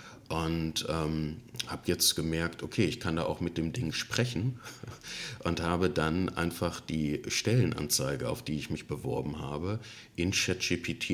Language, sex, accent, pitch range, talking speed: German, male, German, 80-110 Hz, 150 wpm